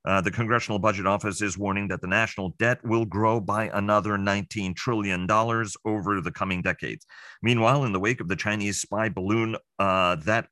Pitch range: 95-115 Hz